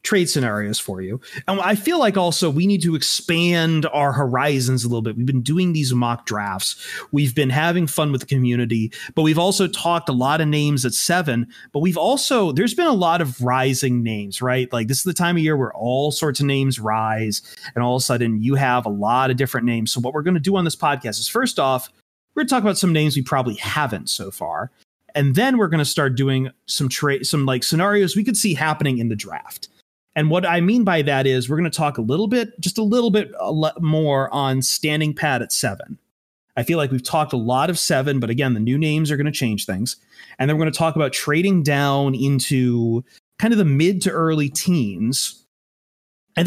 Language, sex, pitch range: English, male, 125-170 Hz